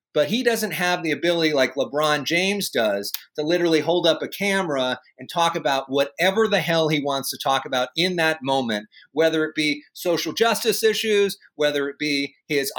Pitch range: 150-205 Hz